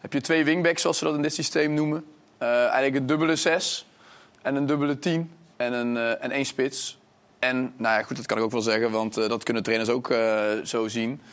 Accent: Dutch